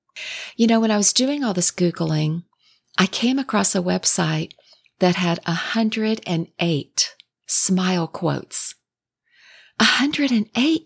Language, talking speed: English, 110 wpm